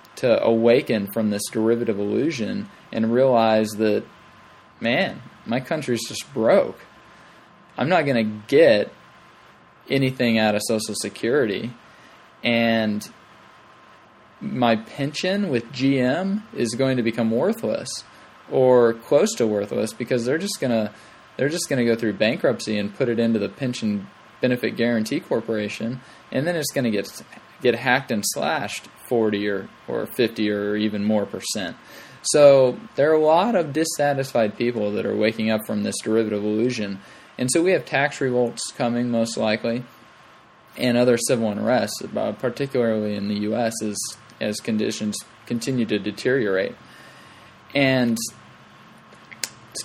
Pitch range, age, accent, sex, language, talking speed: 110-130 Hz, 20-39, American, male, English, 140 wpm